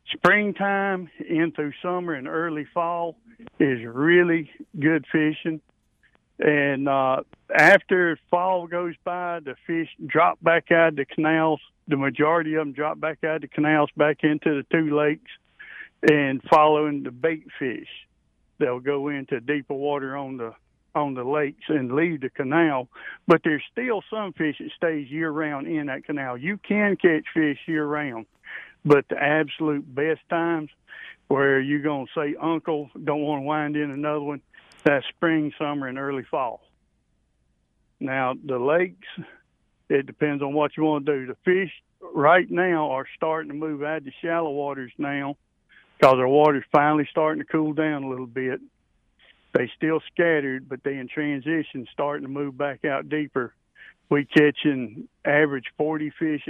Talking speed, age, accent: 160 wpm, 60-79, American